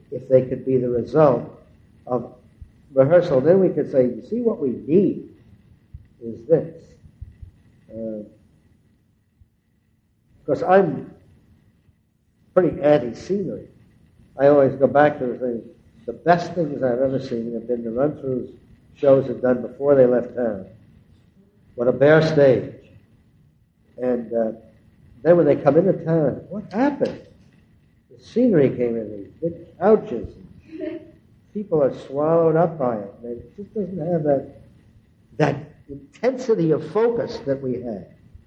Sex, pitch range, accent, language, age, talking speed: male, 120-160 Hz, American, English, 60-79, 140 wpm